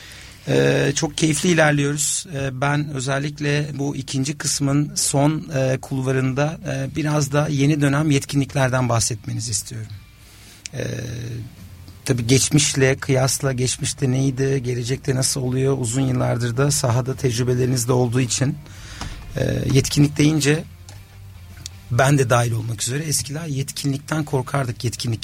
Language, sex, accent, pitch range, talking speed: Turkish, male, native, 120-145 Hz, 120 wpm